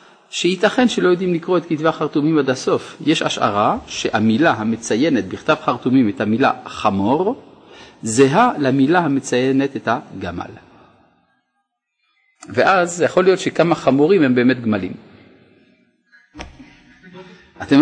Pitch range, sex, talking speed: 125-190 Hz, male, 110 wpm